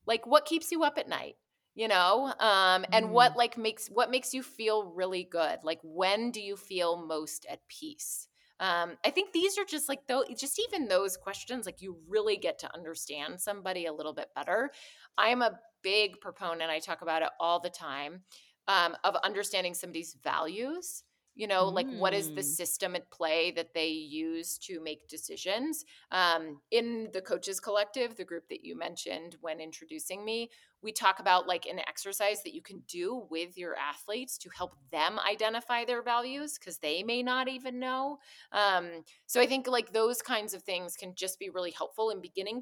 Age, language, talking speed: 30-49, English, 195 wpm